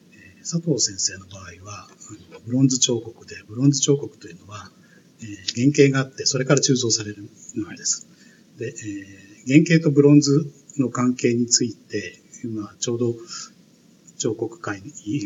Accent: native